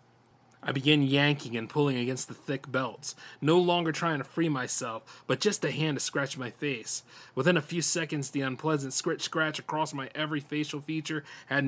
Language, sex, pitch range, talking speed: English, male, 125-145 Hz, 190 wpm